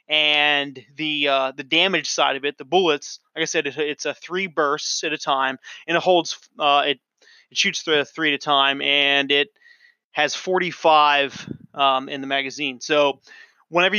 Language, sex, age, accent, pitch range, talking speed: English, male, 20-39, American, 145-180 Hz, 180 wpm